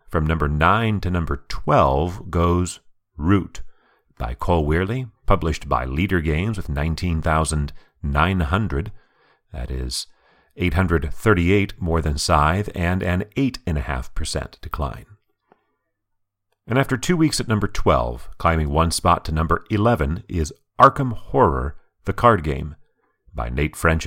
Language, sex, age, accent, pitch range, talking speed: English, male, 40-59, American, 80-105 Hz, 120 wpm